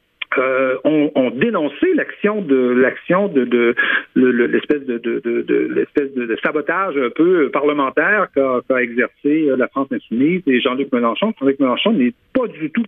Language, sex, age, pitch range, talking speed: French, male, 60-79, 135-215 Hz, 180 wpm